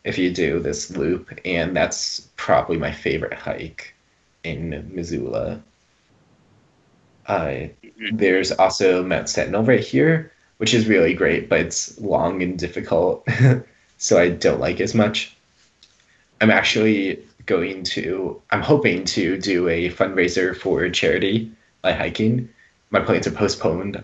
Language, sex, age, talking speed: English, male, 20-39, 135 wpm